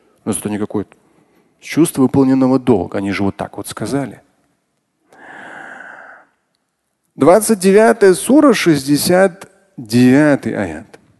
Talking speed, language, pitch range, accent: 80 wpm, Russian, 125-190 Hz, native